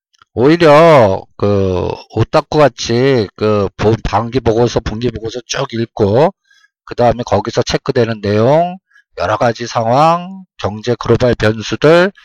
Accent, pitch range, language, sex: native, 115-170 Hz, Korean, male